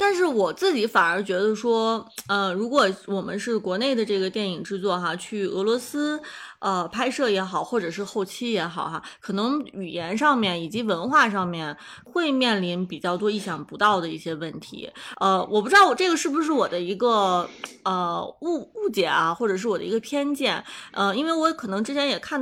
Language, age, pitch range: Chinese, 20-39, 185-245 Hz